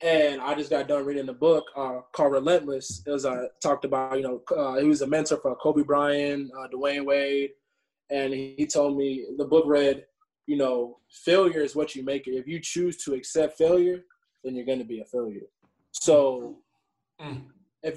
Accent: American